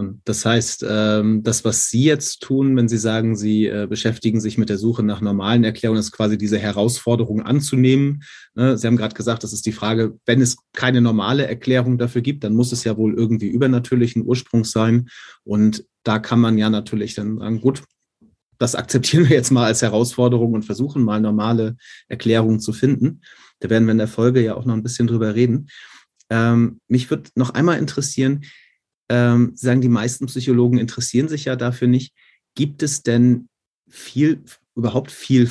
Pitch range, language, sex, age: 110-130 Hz, German, male, 30-49